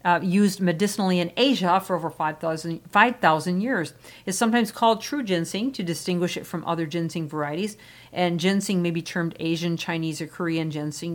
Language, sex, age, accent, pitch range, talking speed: English, female, 50-69, American, 170-215 Hz, 165 wpm